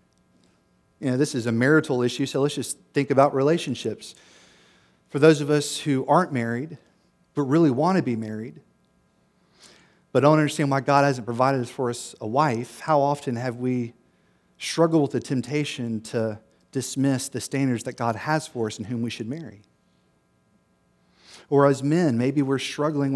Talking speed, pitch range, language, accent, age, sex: 170 wpm, 120-150 Hz, English, American, 40-59, male